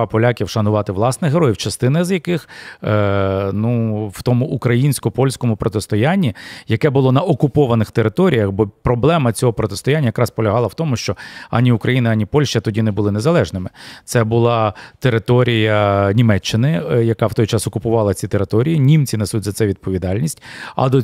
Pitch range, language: 110-130 Hz, Ukrainian